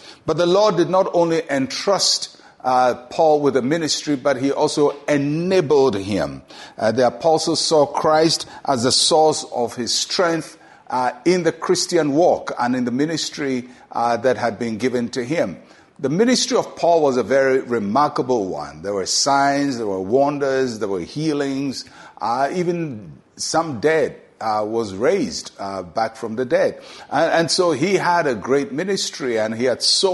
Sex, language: male, English